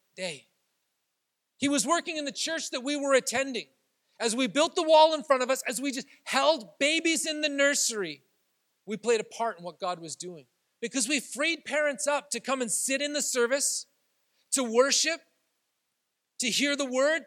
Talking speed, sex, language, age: 190 wpm, male, English, 40-59